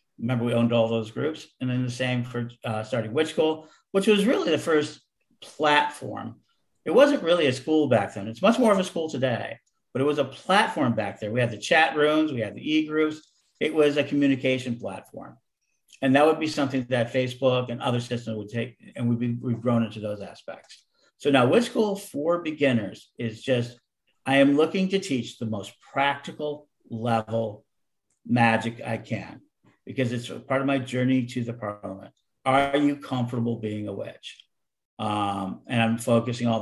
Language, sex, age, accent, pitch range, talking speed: English, male, 50-69, American, 115-150 Hz, 185 wpm